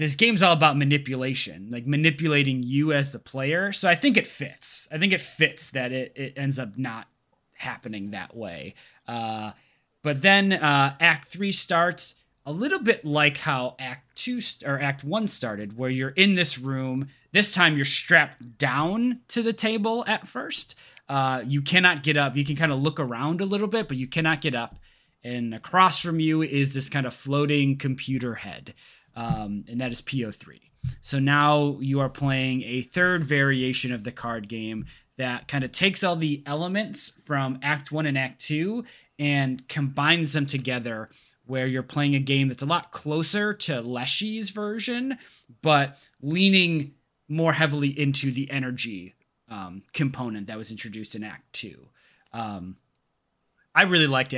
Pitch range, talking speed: 125-160 Hz, 175 wpm